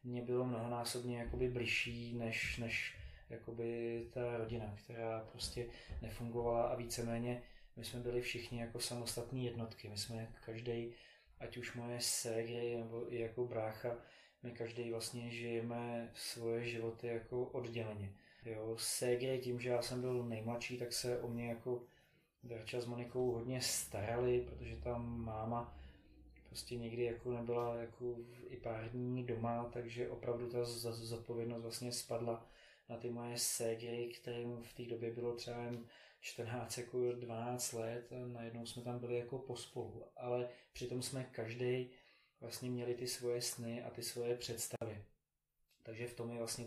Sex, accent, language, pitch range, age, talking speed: male, native, Czech, 115-125 Hz, 20-39, 150 wpm